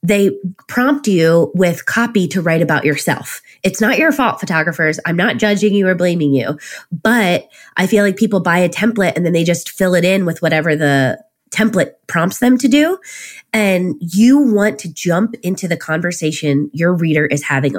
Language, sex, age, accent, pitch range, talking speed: English, female, 20-39, American, 145-190 Hz, 190 wpm